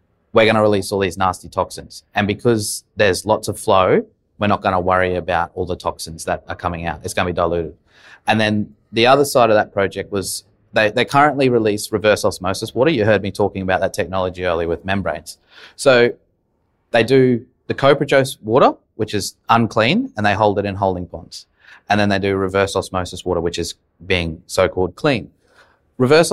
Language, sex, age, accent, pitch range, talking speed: English, male, 20-39, Australian, 90-110 Hz, 200 wpm